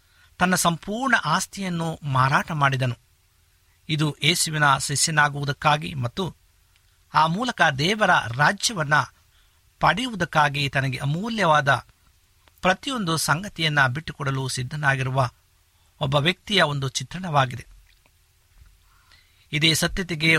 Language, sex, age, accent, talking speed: Kannada, male, 50-69, native, 75 wpm